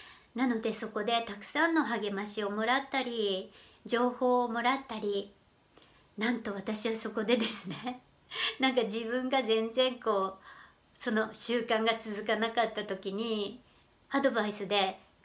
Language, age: Japanese, 50-69